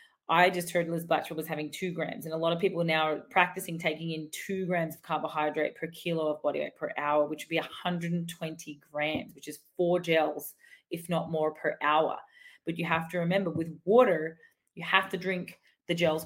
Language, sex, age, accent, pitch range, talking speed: English, female, 30-49, Australian, 160-195 Hz, 210 wpm